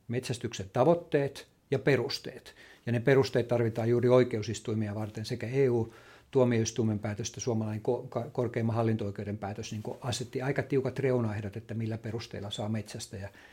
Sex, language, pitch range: male, Finnish, 110-125 Hz